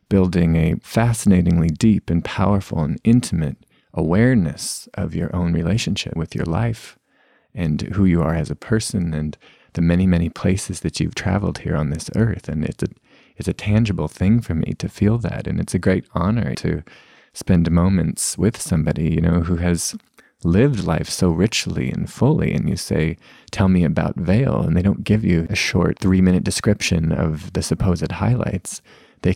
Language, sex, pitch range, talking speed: English, male, 85-100 Hz, 180 wpm